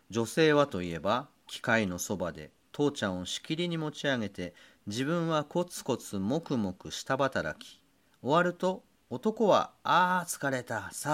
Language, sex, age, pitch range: Japanese, male, 40-59, 100-165 Hz